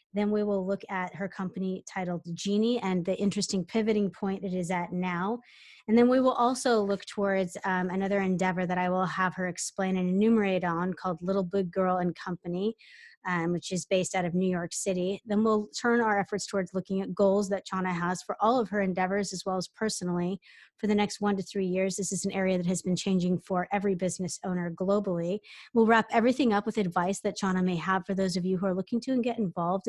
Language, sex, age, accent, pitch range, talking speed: English, female, 20-39, American, 185-220 Hz, 230 wpm